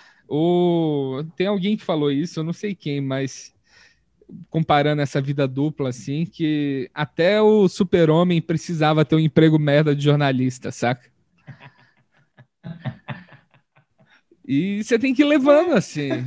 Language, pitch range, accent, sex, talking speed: Portuguese, 145-195 Hz, Brazilian, male, 130 wpm